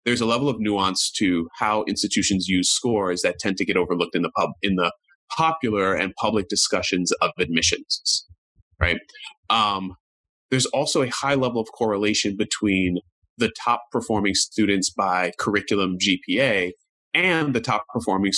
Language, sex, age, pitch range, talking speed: English, male, 30-49, 95-120 Hz, 155 wpm